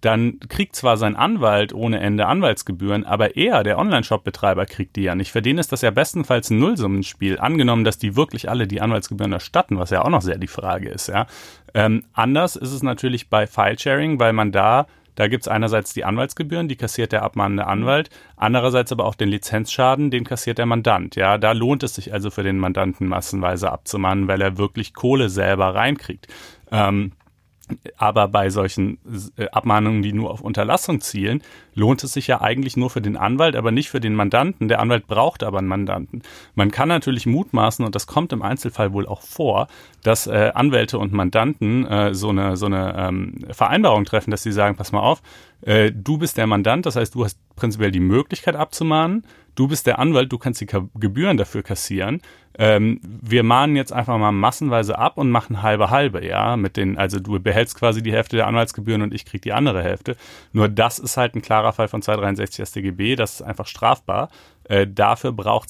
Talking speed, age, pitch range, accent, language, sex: 190 wpm, 40-59, 100-125 Hz, German, German, male